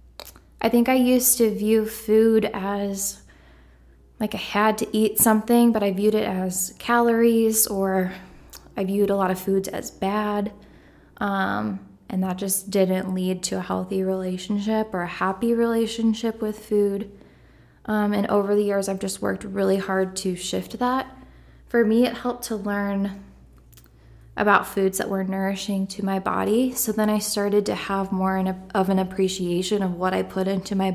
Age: 20-39